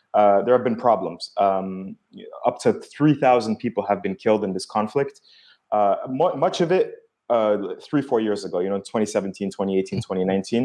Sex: male